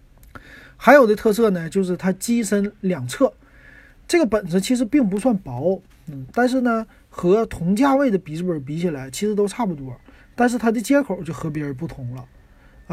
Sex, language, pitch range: male, Chinese, 160-210 Hz